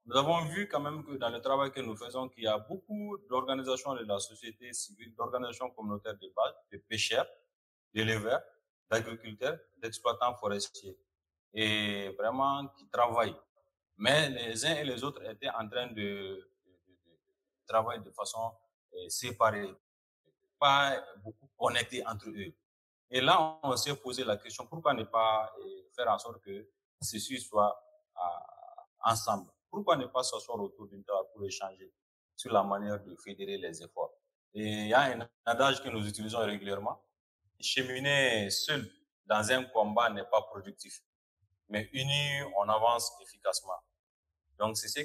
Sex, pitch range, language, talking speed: male, 105-140 Hz, English, 155 wpm